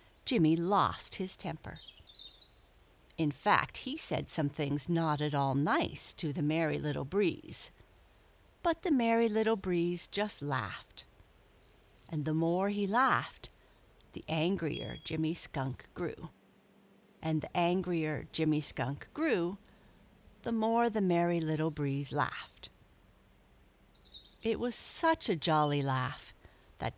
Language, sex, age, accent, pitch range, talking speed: English, female, 60-79, American, 155-210 Hz, 125 wpm